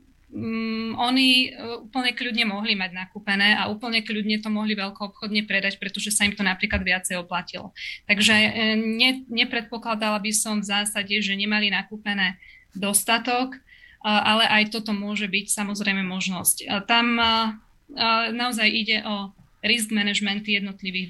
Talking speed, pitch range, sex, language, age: 130 wpm, 200-225 Hz, female, Slovak, 20-39